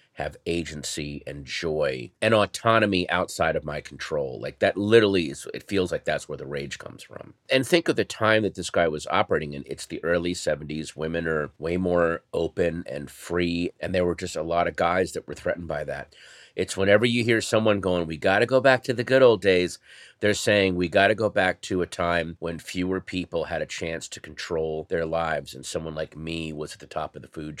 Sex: male